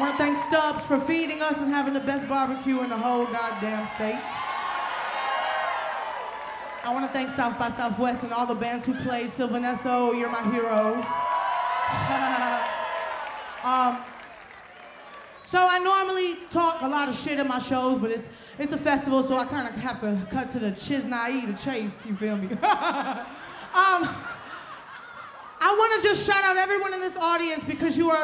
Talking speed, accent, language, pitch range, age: 170 wpm, American, English, 245-315 Hz, 20-39